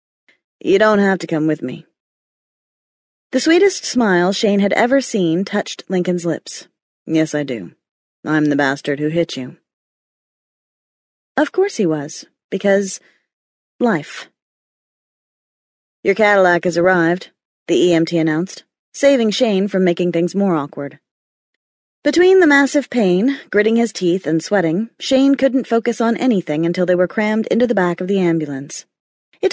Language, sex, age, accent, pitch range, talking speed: English, female, 30-49, American, 175-235 Hz, 145 wpm